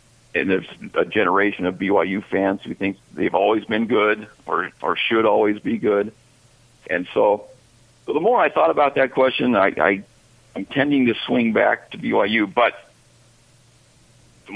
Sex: male